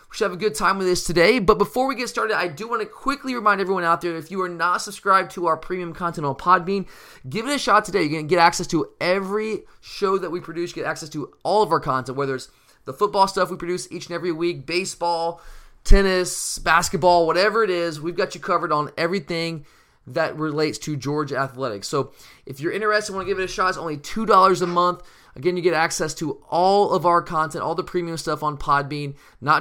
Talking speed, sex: 240 wpm, male